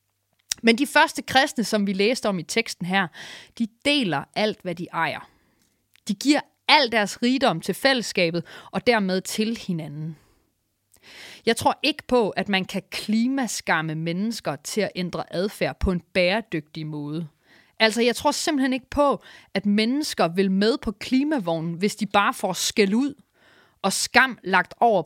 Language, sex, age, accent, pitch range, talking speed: English, female, 30-49, Danish, 170-235 Hz, 160 wpm